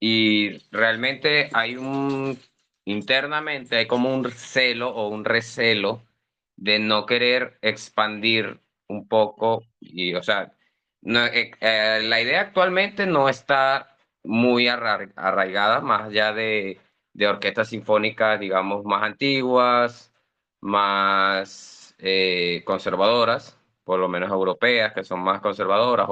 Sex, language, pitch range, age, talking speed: male, Spanish, 100-120 Hz, 30-49, 115 wpm